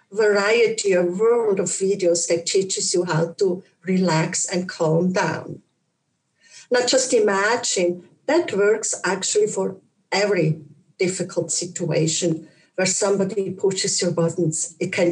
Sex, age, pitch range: female, 50-69, 175-225 Hz